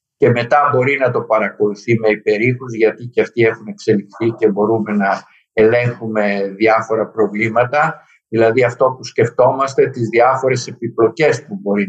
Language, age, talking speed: Greek, 50-69, 140 wpm